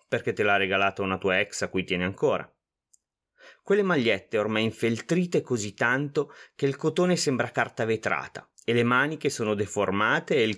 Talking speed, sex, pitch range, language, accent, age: 170 wpm, male, 100-140 Hz, Italian, native, 30-49